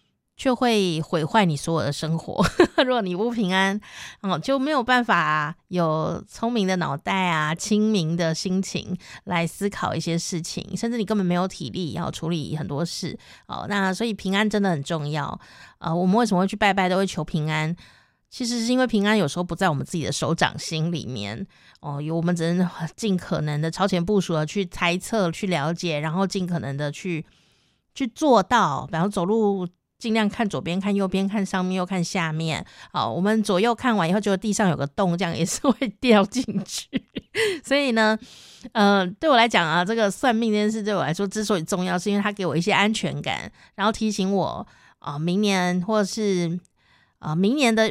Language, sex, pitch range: Chinese, female, 165-215 Hz